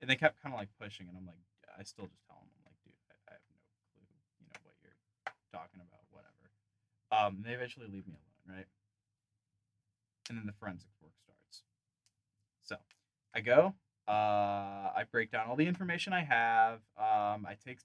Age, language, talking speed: 20-39, English, 200 wpm